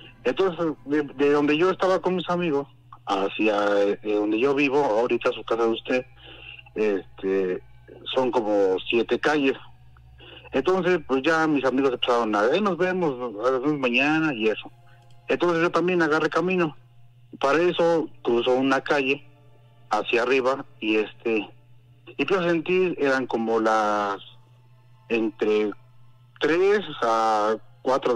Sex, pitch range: male, 115-145 Hz